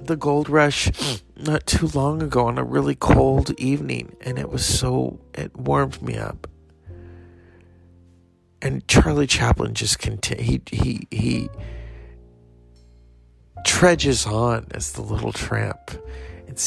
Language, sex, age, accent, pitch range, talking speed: English, male, 40-59, American, 85-120 Hz, 125 wpm